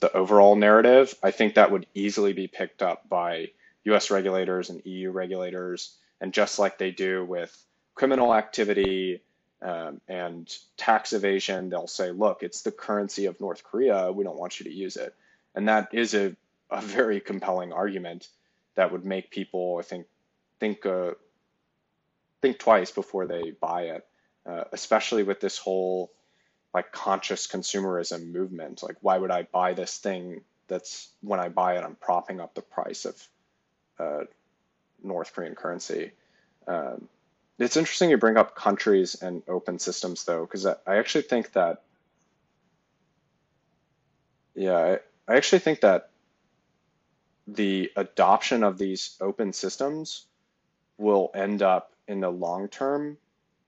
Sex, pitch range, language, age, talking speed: male, 90-110 Hz, English, 20-39, 150 wpm